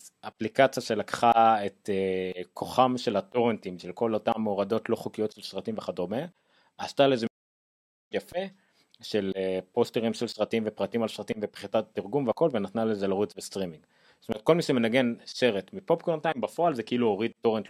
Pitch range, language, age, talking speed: 100-130 Hz, Hebrew, 30-49, 150 wpm